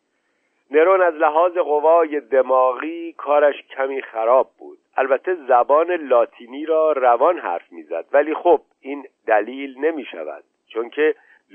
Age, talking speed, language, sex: 50-69, 130 wpm, Persian, male